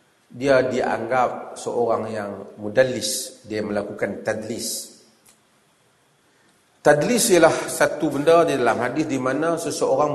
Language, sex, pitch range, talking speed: Malay, male, 140-225 Hz, 105 wpm